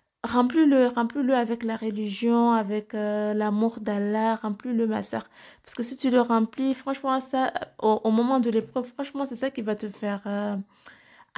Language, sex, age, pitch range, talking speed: French, female, 20-39, 220-255 Hz, 175 wpm